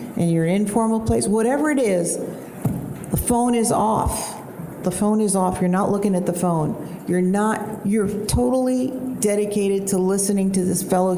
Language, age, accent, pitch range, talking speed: English, 50-69, American, 185-225 Hz, 165 wpm